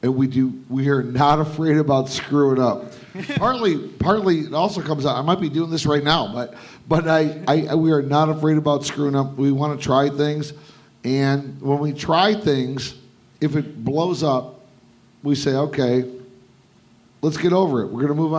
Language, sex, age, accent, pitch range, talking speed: English, male, 50-69, American, 130-155 Hz, 190 wpm